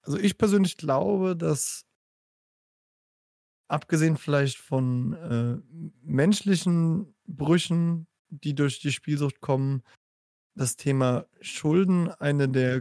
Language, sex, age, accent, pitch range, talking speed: German, male, 20-39, German, 130-150 Hz, 100 wpm